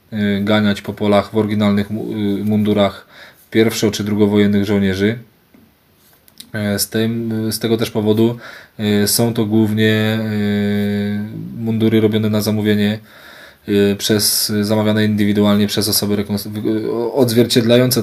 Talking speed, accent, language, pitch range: 95 wpm, native, Polish, 105-115 Hz